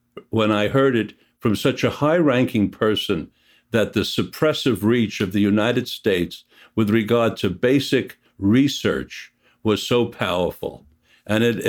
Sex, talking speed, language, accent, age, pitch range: male, 135 wpm, English, American, 60-79, 95-120 Hz